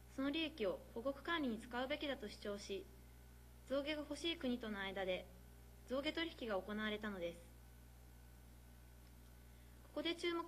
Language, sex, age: Japanese, female, 20-39